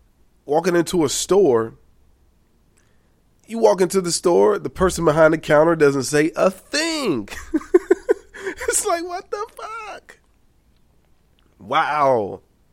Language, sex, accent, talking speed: English, male, American, 115 wpm